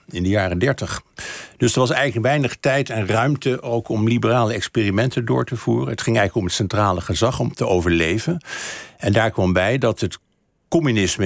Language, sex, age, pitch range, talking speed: Dutch, male, 60-79, 90-115 Hz, 190 wpm